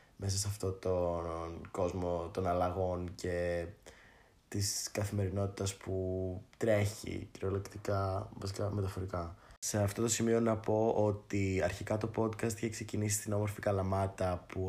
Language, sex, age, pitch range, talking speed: Greek, male, 20-39, 95-115 Hz, 125 wpm